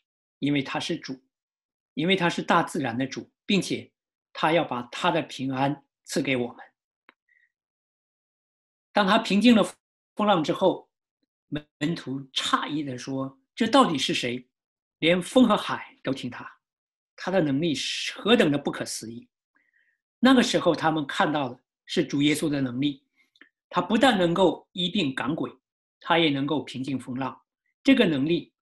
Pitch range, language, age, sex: 130-190 Hz, English, 50-69, male